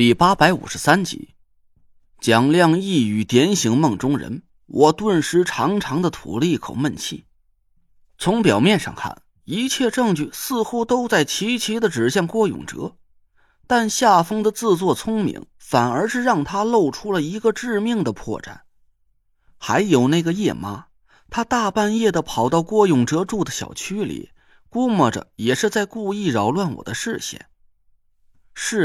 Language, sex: Chinese, male